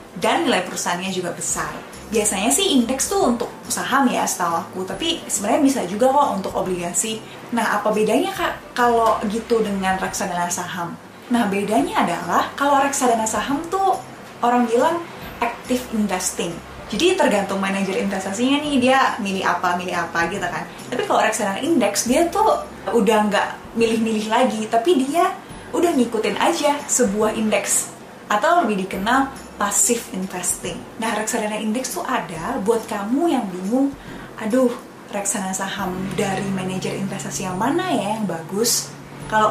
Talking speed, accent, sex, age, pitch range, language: 145 wpm, native, female, 10-29, 195-250 Hz, Indonesian